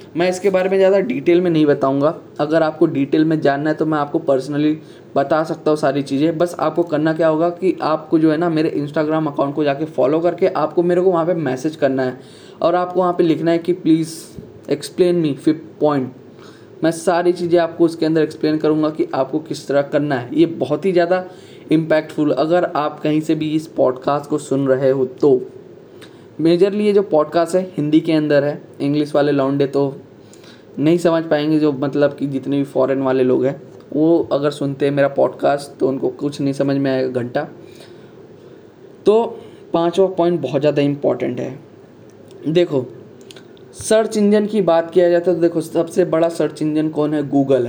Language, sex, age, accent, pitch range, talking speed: Hindi, male, 10-29, native, 145-175 Hz, 195 wpm